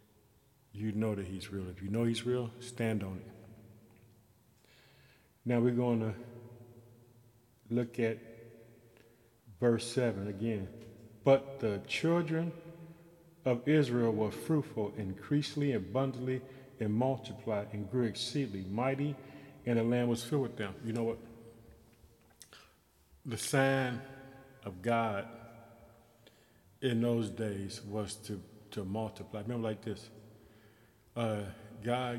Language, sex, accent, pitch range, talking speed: English, male, American, 105-120 Hz, 115 wpm